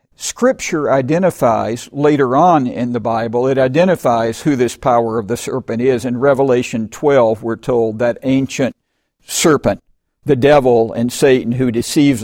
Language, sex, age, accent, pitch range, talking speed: English, male, 60-79, American, 120-145 Hz, 145 wpm